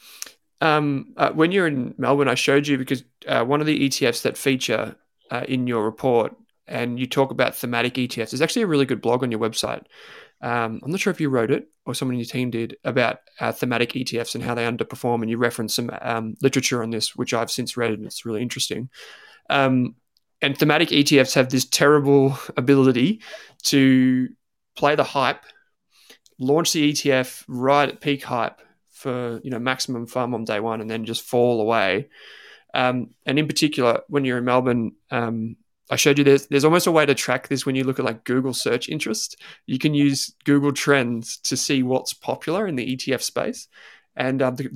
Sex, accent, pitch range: male, Australian, 120-140 Hz